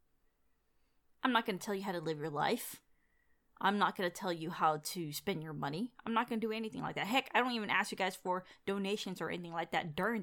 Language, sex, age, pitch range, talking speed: English, female, 20-39, 160-215 Hz, 260 wpm